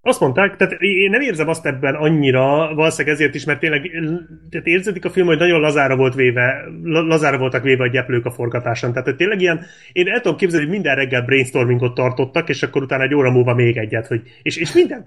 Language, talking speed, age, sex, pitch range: Hungarian, 215 wpm, 30-49, male, 135-175 Hz